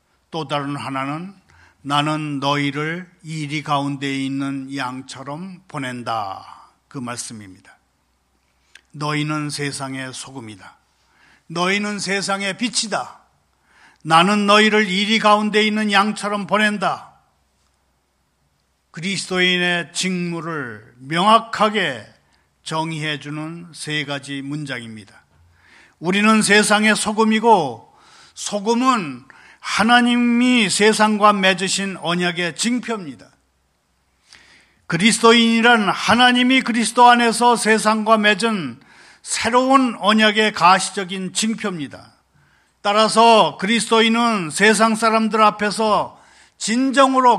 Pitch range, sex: 140-220 Hz, male